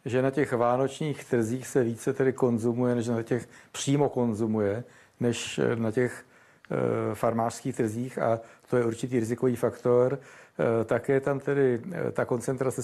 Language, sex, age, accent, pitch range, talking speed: Czech, male, 60-79, native, 120-135 Hz, 140 wpm